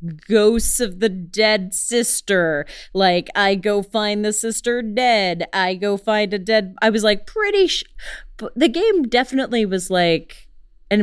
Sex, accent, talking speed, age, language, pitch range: female, American, 145 wpm, 30-49, English, 160-215 Hz